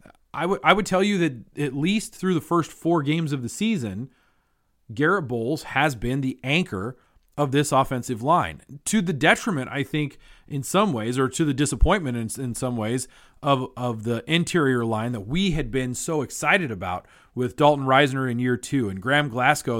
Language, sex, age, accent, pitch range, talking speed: English, male, 30-49, American, 125-155 Hz, 195 wpm